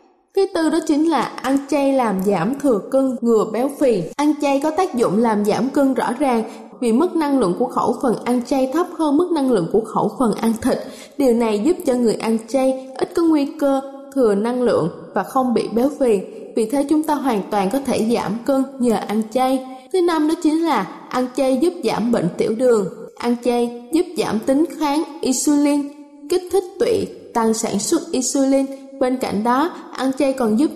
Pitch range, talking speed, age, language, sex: 225-290 Hz, 210 wpm, 10-29, Vietnamese, female